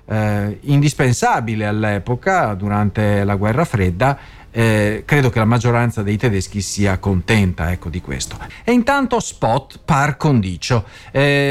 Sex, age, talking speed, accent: male, 40-59, 130 wpm, native